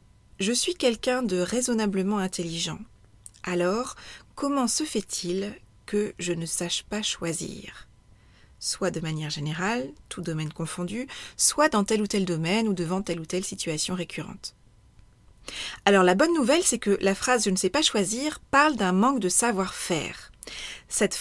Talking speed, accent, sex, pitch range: 155 wpm, French, female, 175-220 Hz